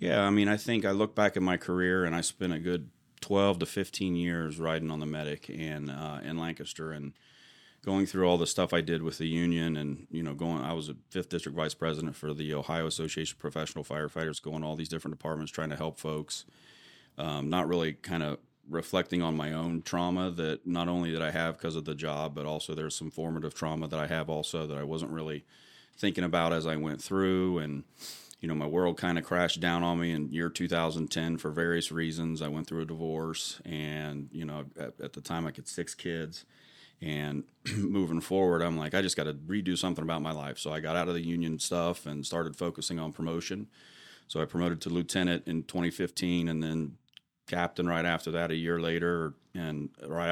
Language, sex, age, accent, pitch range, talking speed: English, male, 30-49, American, 80-85 Hz, 220 wpm